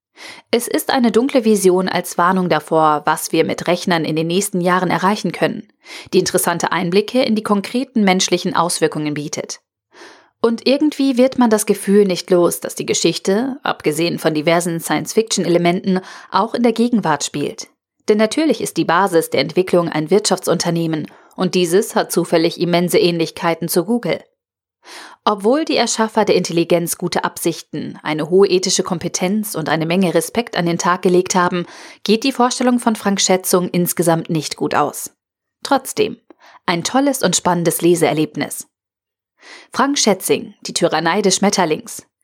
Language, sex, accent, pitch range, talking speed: German, female, German, 170-215 Hz, 150 wpm